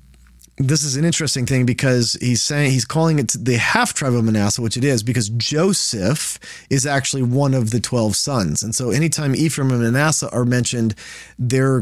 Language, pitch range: English, 120-150 Hz